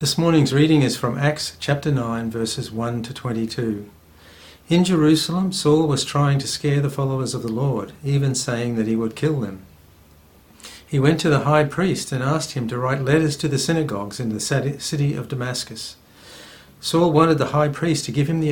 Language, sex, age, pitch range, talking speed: English, male, 60-79, 115-150 Hz, 195 wpm